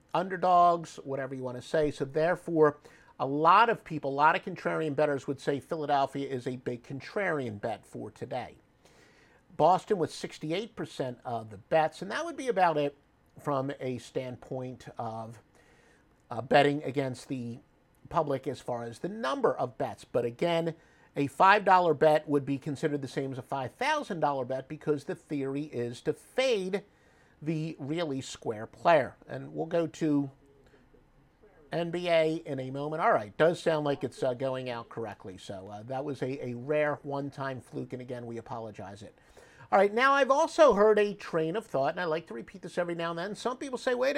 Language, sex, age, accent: English, male, 50-69, American